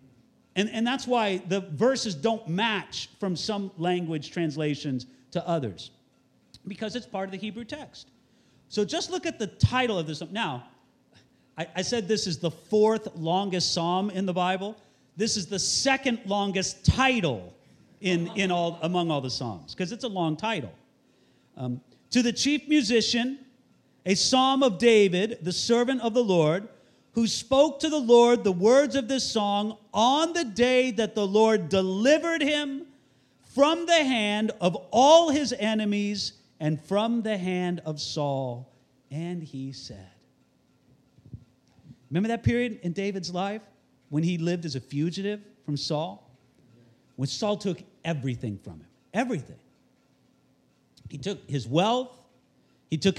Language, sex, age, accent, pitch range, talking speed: English, male, 40-59, American, 160-235 Hz, 150 wpm